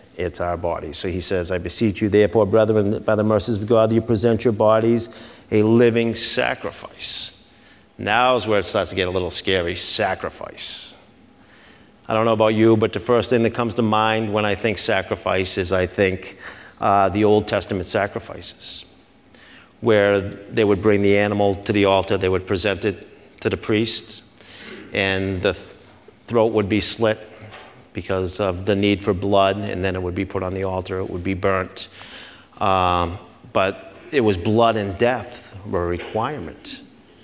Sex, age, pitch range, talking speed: male, 40-59, 95-115 Hz, 175 wpm